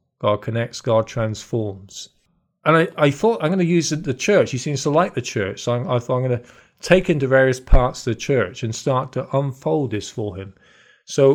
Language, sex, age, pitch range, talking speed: English, male, 40-59, 115-145 Hz, 210 wpm